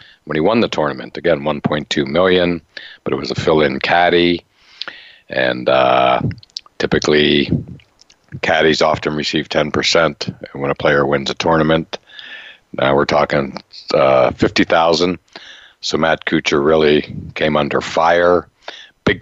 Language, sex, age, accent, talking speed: English, male, 60-79, American, 125 wpm